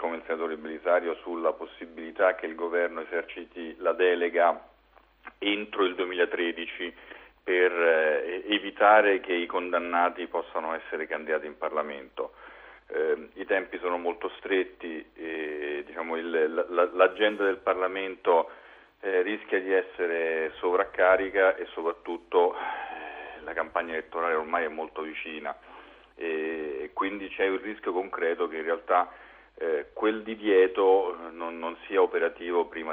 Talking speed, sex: 130 wpm, male